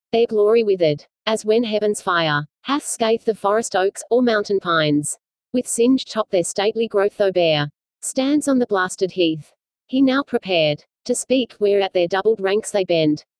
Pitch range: 185-235 Hz